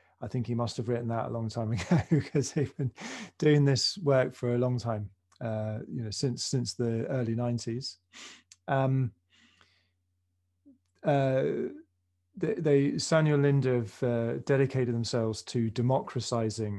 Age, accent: 30-49, British